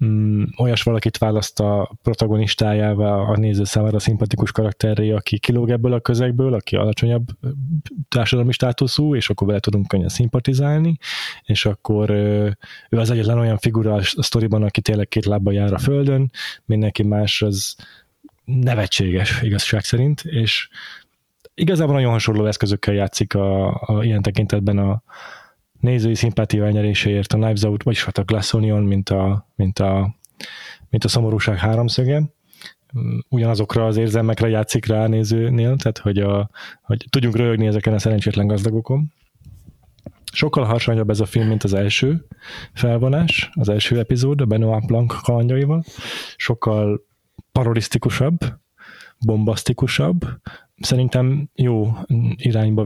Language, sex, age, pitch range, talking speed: Hungarian, male, 20-39, 105-125 Hz, 135 wpm